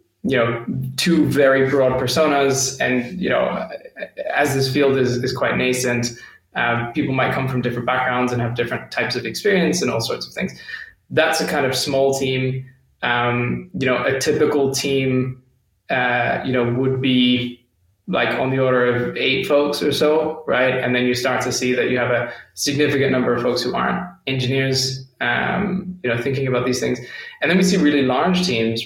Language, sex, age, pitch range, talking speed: English, male, 20-39, 120-135 Hz, 190 wpm